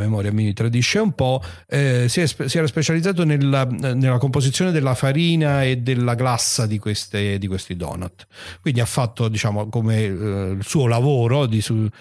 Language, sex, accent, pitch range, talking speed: Italian, male, native, 95-125 Hz, 175 wpm